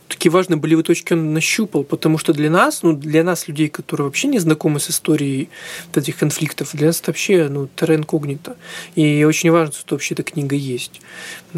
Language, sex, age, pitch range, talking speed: Russian, male, 20-39, 155-180 Hz, 185 wpm